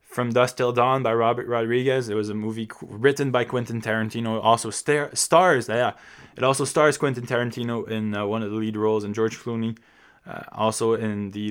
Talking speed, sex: 205 wpm, male